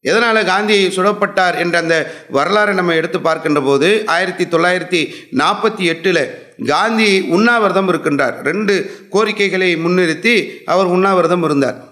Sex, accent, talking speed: male, Indian, 165 wpm